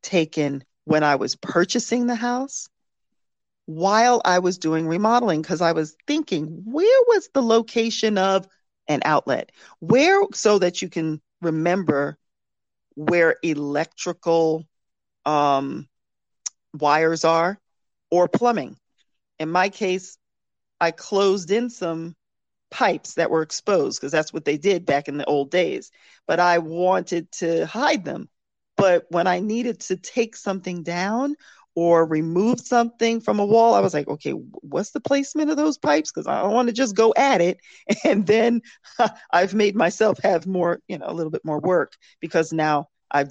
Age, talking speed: 40-59, 155 wpm